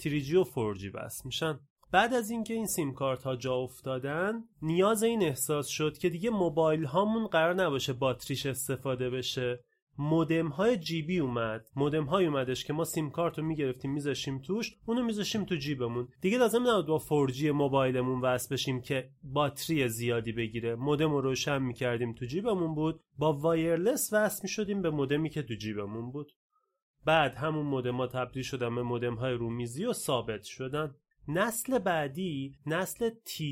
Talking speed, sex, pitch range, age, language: 160 wpm, male, 125-170 Hz, 30-49, Persian